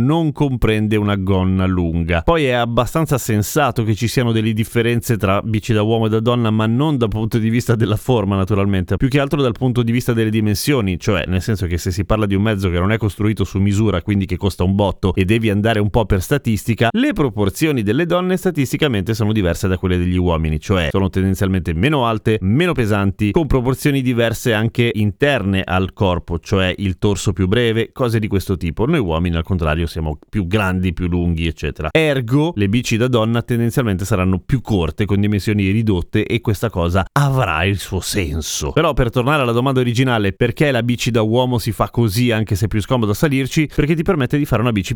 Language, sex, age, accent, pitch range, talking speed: Italian, male, 30-49, native, 95-125 Hz, 210 wpm